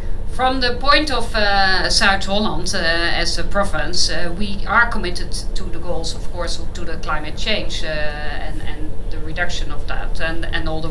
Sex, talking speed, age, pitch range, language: female, 195 wpm, 50-69, 150-215 Hz, English